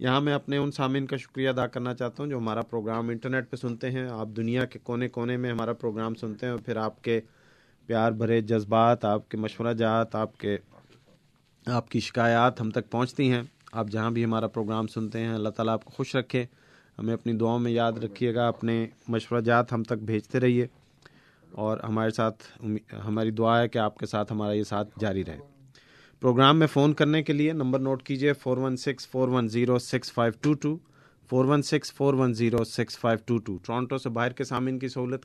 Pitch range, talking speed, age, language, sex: 115-135 Hz, 180 wpm, 40-59, Urdu, male